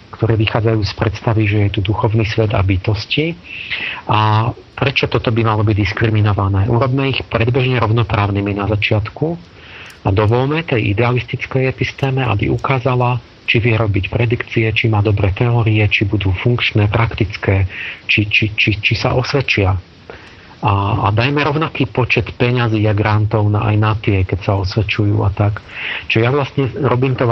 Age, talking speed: 40-59, 160 wpm